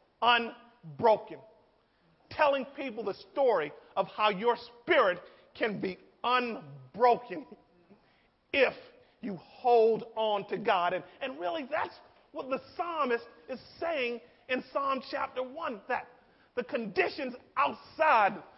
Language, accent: English, American